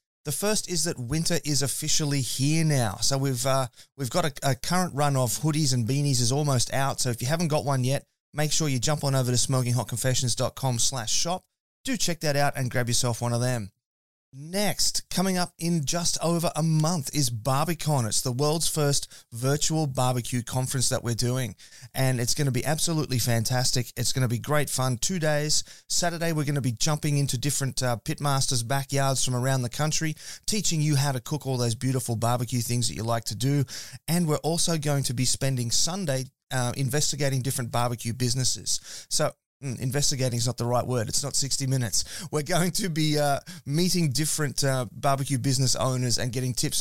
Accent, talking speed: Australian, 195 wpm